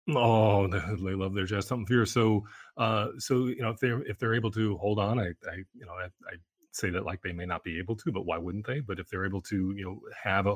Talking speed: 265 wpm